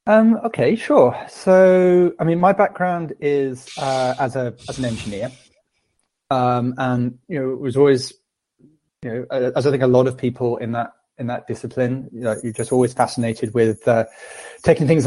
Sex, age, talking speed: male, 20-39, 185 wpm